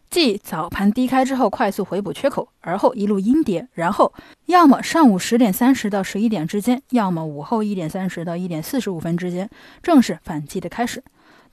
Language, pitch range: Chinese, 180-255 Hz